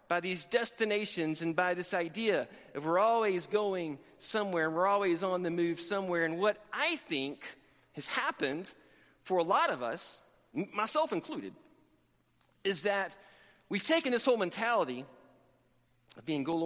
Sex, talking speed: male, 160 wpm